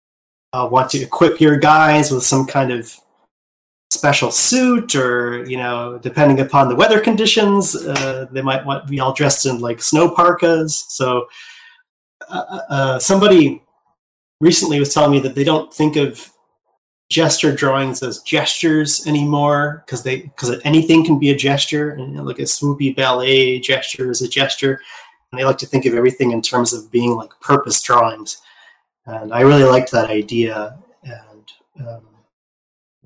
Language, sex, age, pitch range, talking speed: English, male, 30-49, 125-150 Hz, 165 wpm